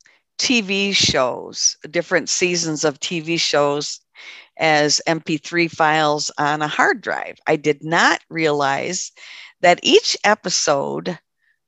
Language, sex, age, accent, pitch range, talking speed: English, female, 50-69, American, 150-180 Hz, 110 wpm